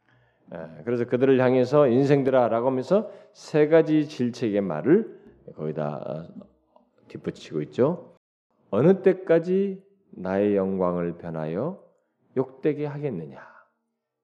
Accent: native